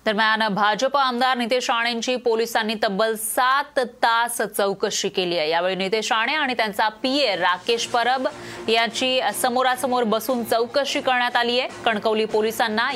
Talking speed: 130 wpm